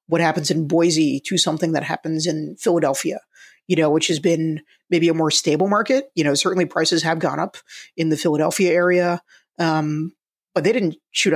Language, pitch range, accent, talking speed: English, 160-185 Hz, American, 190 wpm